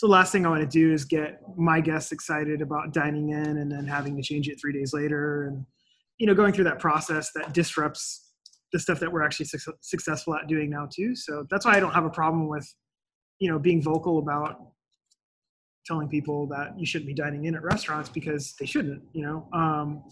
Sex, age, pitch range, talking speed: male, 20-39, 150-175 Hz, 220 wpm